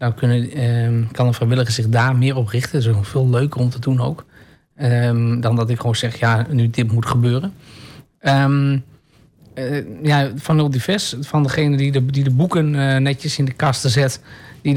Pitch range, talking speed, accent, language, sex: 125-145 Hz, 205 wpm, Dutch, Dutch, male